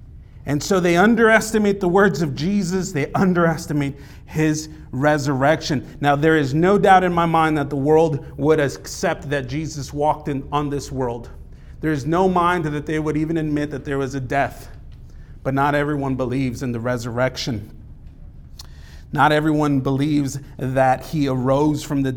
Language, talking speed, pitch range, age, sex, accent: English, 165 wpm, 115-150 Hz, 40-59, male, American